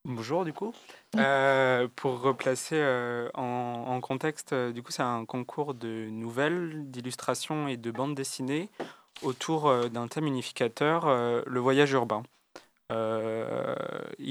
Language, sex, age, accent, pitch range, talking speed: French, male, 20-39, French, 120-140 Hz, 140 wpm